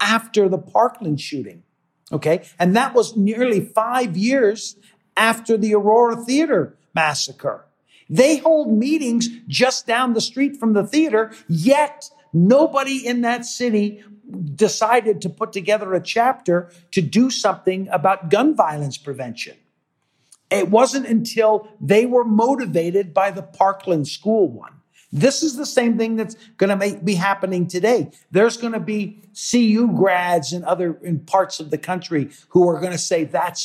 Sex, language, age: male, English, 50-69